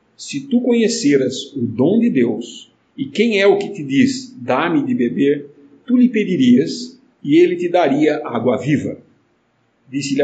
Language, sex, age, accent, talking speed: English, male, 50-69, Brazilian, 160 wpm